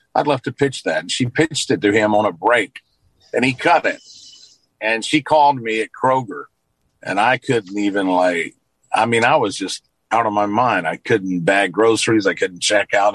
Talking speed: 210 wpm